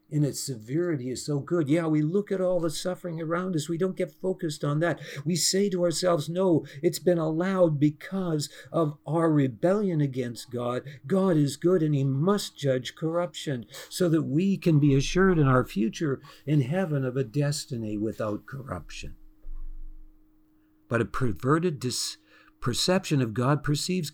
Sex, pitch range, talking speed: male, 115-170 Hz, 165 wpm